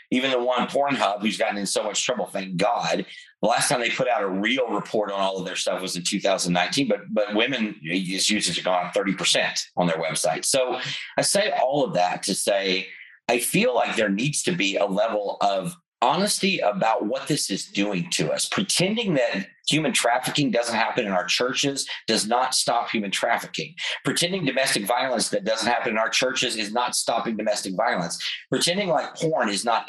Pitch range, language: 95-150 Hz, English